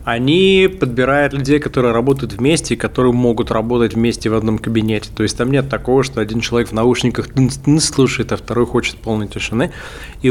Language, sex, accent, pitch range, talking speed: Russian, male, native, 115-140 Hz, 180 wpm